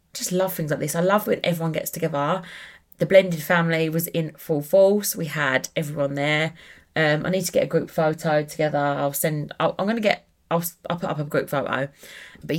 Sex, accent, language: female, British, English